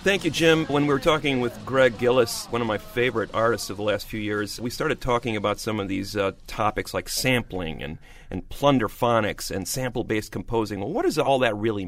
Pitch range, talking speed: 105-140 Hz, 220 wpm